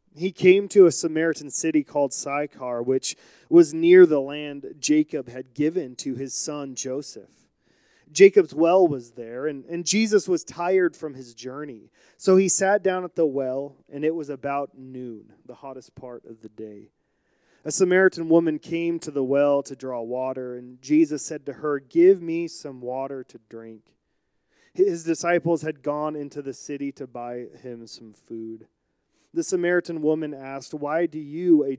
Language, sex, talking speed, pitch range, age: English, male, 170 wpm, 130-170 Hz, 30-49